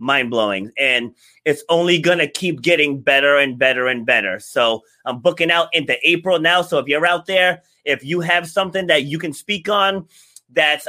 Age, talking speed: 30-49, 195 wpm